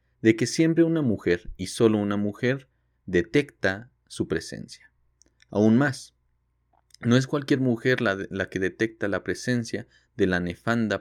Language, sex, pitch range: Spanish, male, 90-125 Hz